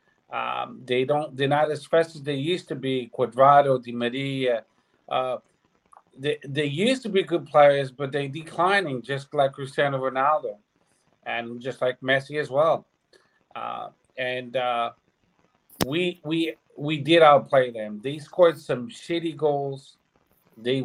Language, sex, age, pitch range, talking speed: English, male, 40-59, 130-155 Hz, 145 wpm